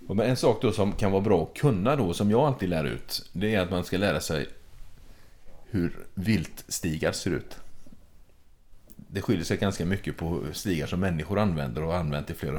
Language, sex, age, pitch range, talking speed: Swedish, male, 30-49, 80-100 Hz, 200 wpm